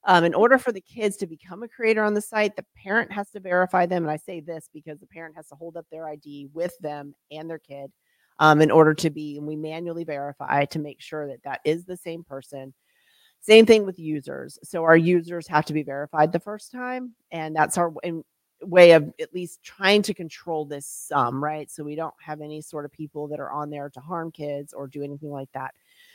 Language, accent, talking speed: English, American, 235 wpm